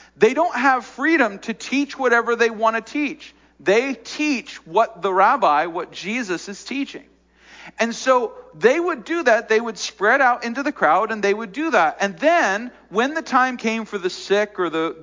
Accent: American